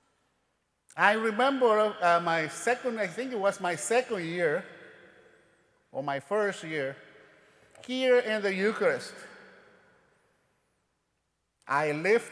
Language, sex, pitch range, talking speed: English, male, 165-220 Hz, 105 wpm